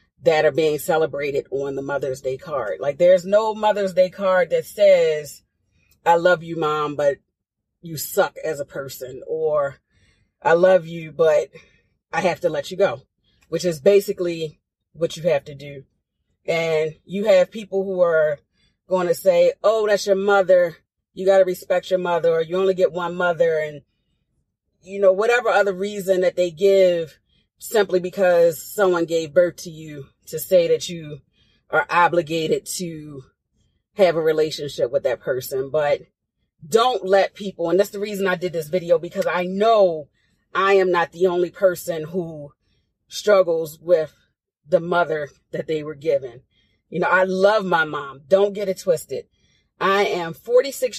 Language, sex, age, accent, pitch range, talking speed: English, female, 30-49, American, 150-195 Hz, 170 wpm